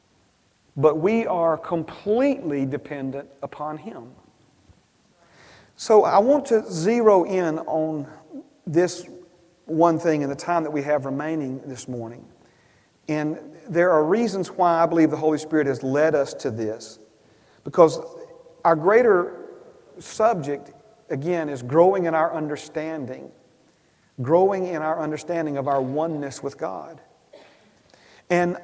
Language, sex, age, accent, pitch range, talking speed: English, male, 40-59, American, 150-190 Hz, 130 wpm